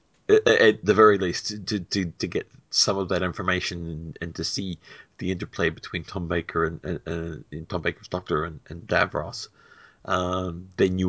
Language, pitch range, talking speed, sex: English, 90-120 Hz, 185 wpm, male